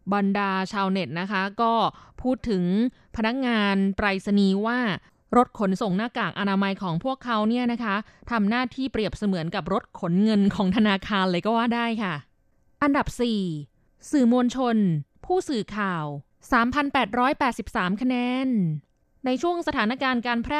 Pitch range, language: 190-245 Hz, Thai